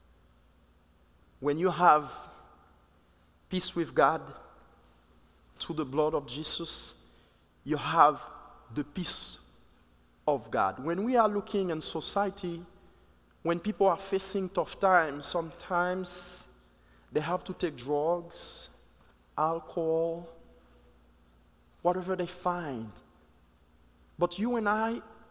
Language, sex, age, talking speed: English, male, 40-59, 100 wpm